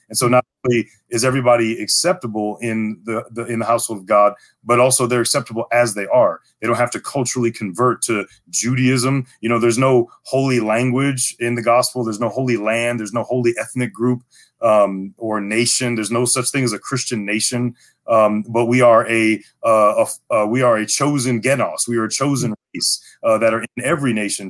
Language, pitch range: English, 110-130 Hz